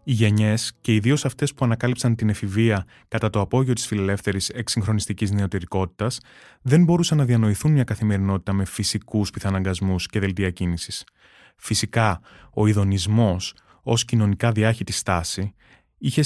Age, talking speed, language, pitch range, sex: 20-39, 135 wpm, Greek, 100-125 Hz, male